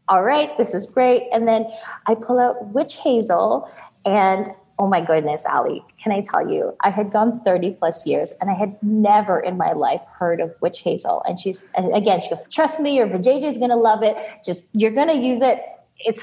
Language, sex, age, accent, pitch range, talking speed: English, female, 20-39, American, 180-280 Hz, 220 wpm